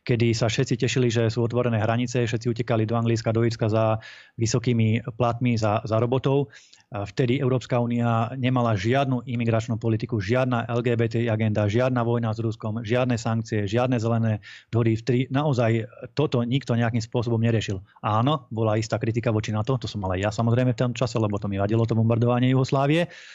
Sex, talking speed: male, 165 wpm